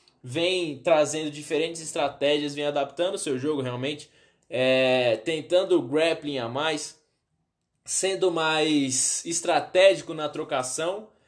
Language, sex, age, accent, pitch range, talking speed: Portuguese, male, 10-29, Brazilian, 140-170 Hz, 105 wpm